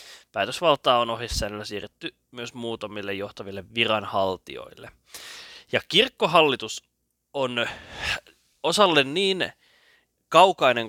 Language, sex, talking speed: Finnish, male, 75 wpm